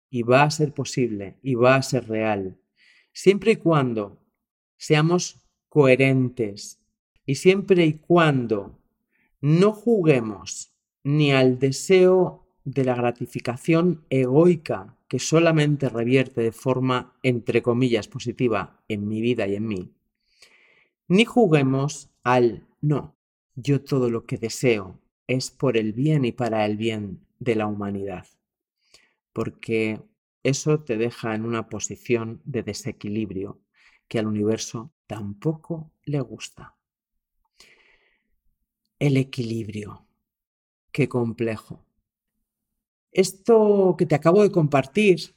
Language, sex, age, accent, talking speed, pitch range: Spanish, male, 40-59, Spanish, 115 wpm, 115-155 Hz